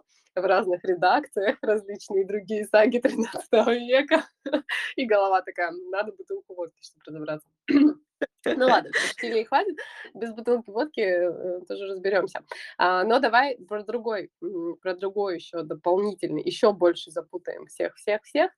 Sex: female